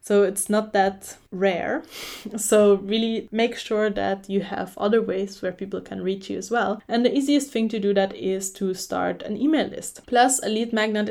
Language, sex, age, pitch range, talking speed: English, female, 10-29, 185-230 Hz, 205 wpm